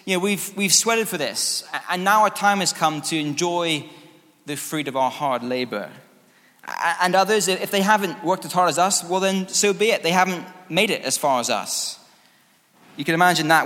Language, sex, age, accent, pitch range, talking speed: English, male, 20-39, British, 125-175 Hz, 210 wpm